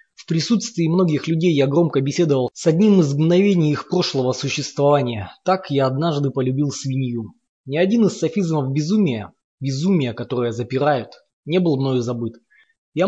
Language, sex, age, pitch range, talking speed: Russian, male, 20-39, 125-165 Hz, 145 wpm